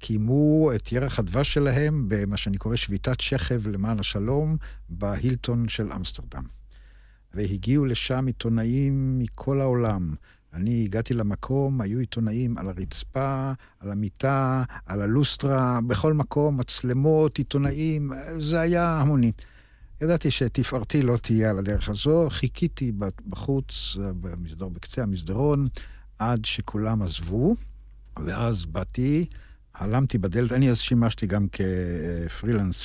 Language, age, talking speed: Hebrew, 60-79, 115 wpm